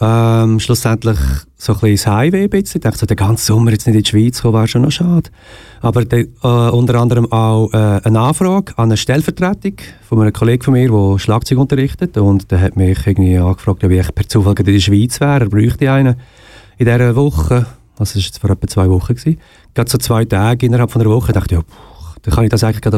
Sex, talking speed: male, 230 wpm